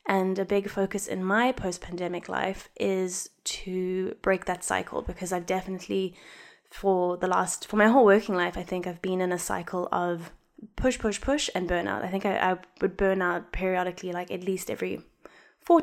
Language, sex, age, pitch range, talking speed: English, female, 20-39, 180-225 Hz, 190 wpm